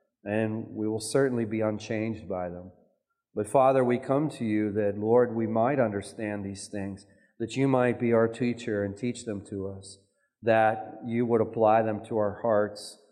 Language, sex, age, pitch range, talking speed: English, male, 40-59, 100-120 Hz, 185 wpm